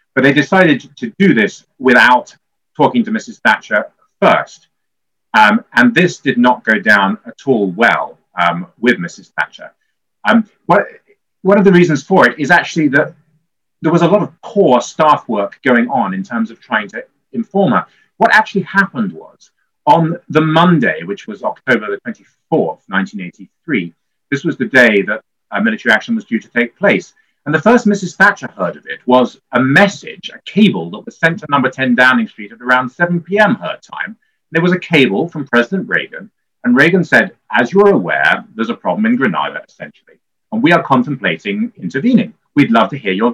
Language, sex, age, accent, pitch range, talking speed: English, male, 30-49, British, 155-225 Hz, 185 wpm